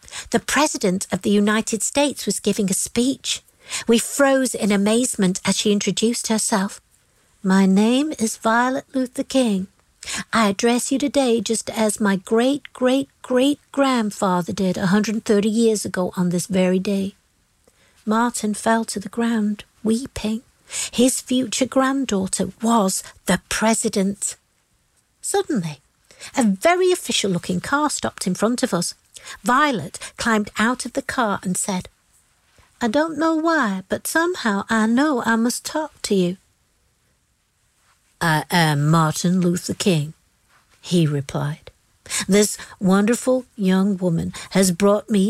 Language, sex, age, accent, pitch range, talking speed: English, female, 60-79, British, 195-255 Hz, 130 wpm